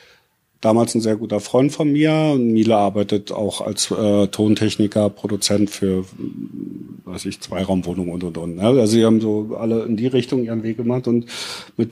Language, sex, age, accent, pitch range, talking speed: German, male, 50-69, German, 105-135 Hz, 165 wpm